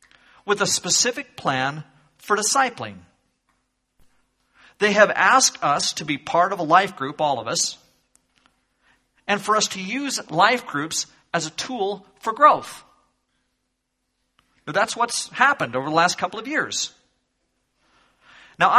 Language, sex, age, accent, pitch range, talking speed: English, male, 50-69, American, 170-240 Hz, 135 wpm